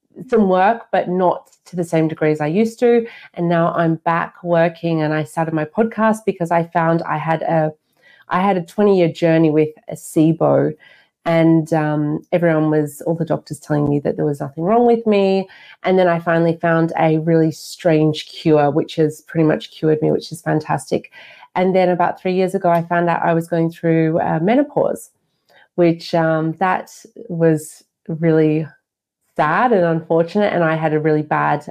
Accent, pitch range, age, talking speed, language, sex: Australian, 155-175 Hz, 30-49, 185 wpm, English, female